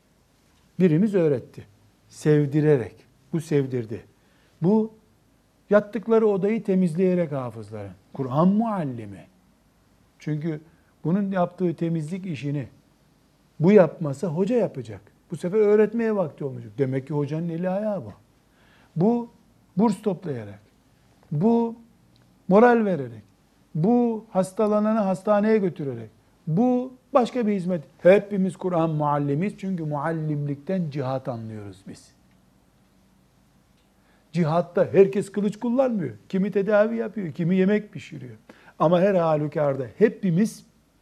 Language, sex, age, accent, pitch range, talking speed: Turkish, male, 60-79, native, 130-200 Hz, 100 wpm